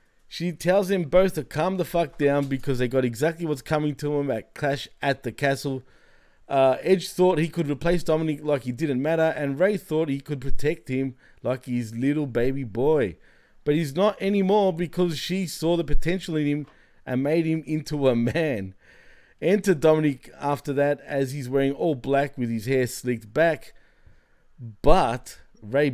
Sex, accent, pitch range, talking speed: male, Australian, 130-165 Hz, 180 wpm